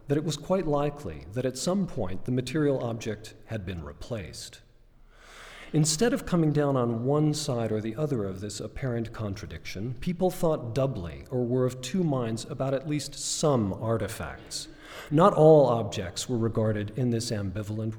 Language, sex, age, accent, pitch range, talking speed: English, male, 40-59, American, 110-150 Hz, 165 wpm